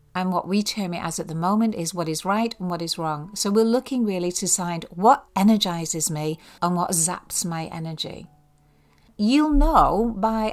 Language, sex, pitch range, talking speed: English, female, 175-230 Hz, 195 wpm